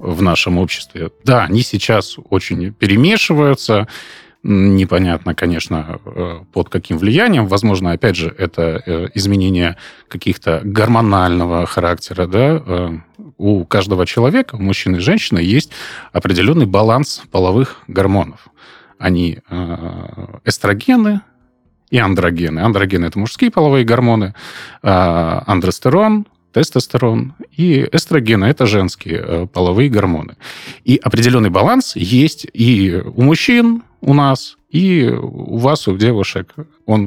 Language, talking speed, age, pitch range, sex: Russian, 110 wpm, 30-49, 90-130 Hz, male